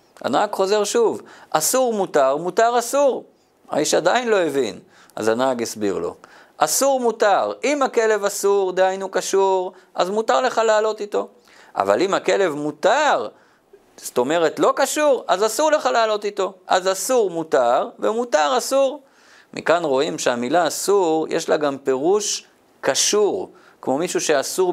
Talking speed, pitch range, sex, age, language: 140 wpm, 170-250 Hz, male, 50-69, Hebrew